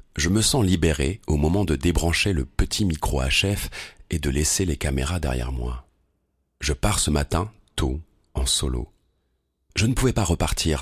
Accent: French